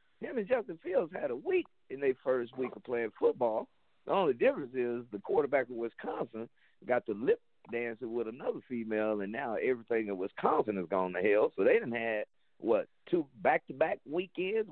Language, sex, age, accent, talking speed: English, male, 50-69, American, 190 wpm